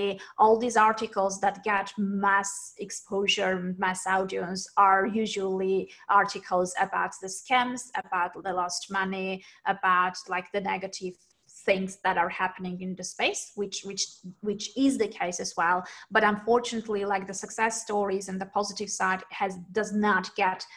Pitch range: 190-215 Hz